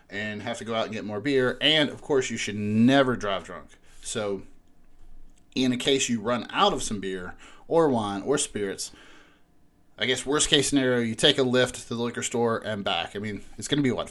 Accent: American